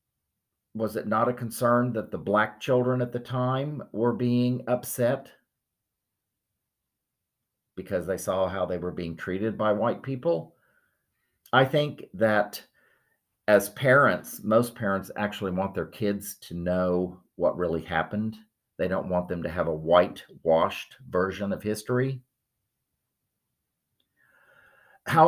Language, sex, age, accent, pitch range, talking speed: English, male, 50-69, American, 90-120 Hz, 130 wpm